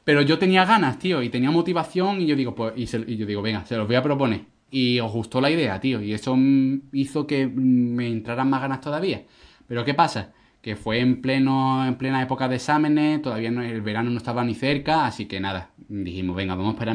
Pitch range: 110-135 Hz